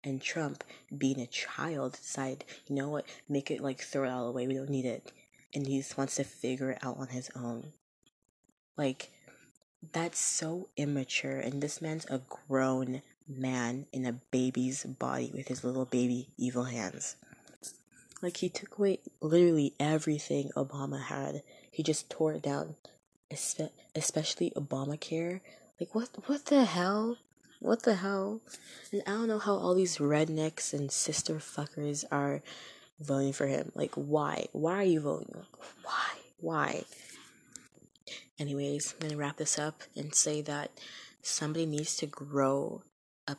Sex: female